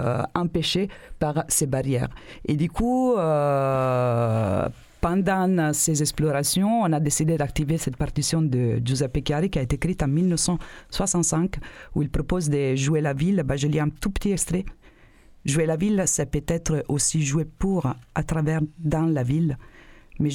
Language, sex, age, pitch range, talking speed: French, female, 40-59, 135-160 Hz, 160 wpm